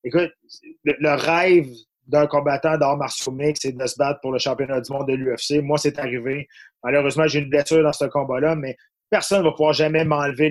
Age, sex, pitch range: 30-49, male, 135-155 Hz